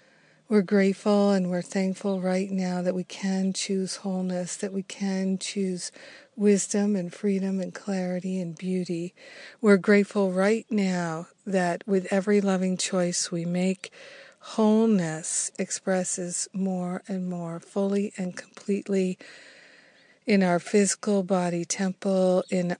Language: English